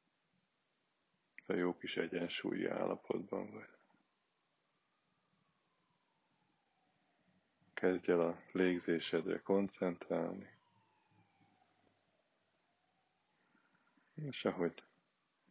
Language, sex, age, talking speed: Hungarian, male, 20-39, 50 wpm